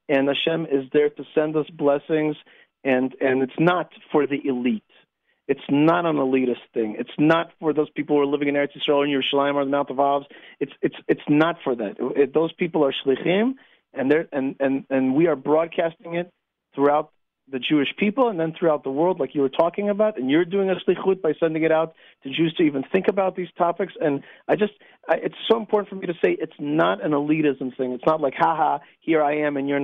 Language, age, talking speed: English, 40-59, 230 wpm